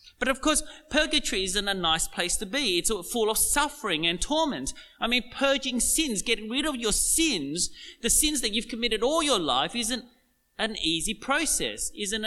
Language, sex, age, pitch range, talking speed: English, male, 30-49, 185-265 Hz, 185 wpm